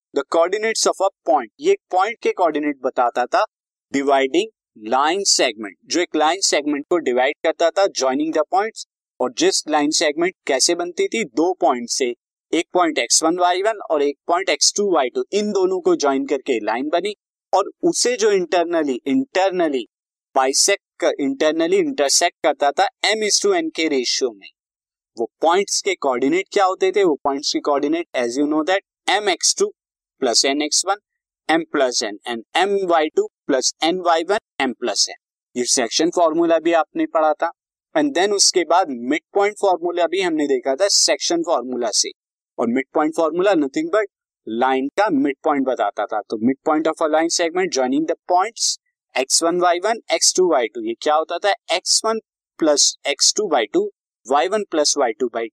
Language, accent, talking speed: Hindi, native, 150 wpm